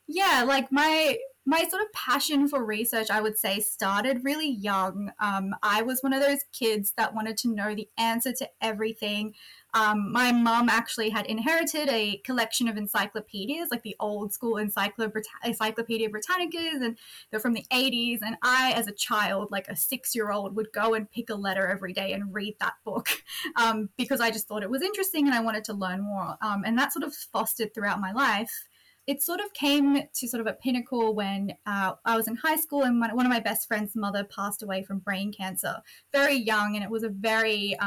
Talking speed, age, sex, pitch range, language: 205 wpm, 10-29, female, 205-250 Hz, English